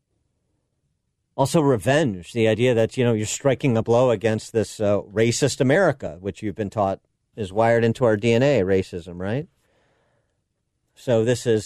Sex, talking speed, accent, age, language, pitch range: male, 155 wpm, American, 50-69, English, 95-125 Hz